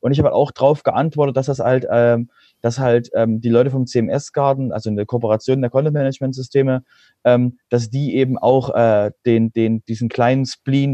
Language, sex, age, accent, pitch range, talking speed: German, male, 30-49, German, 120-140 Hz, 210 wpm